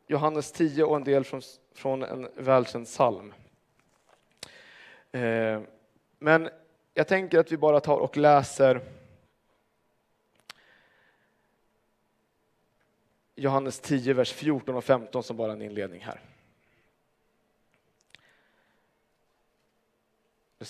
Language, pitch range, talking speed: Swedish, 120-155 Hz, 95 wpm